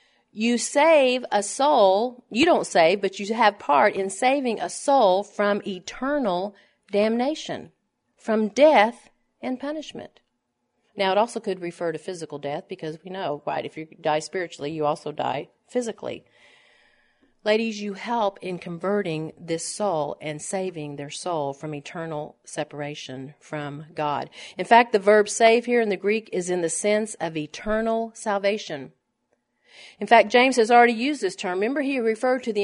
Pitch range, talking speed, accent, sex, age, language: 160-225 Hz, 160 wpm, American, female, 40-59, English